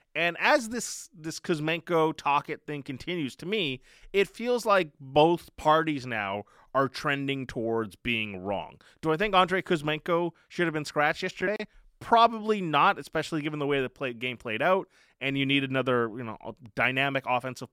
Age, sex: 20-39, male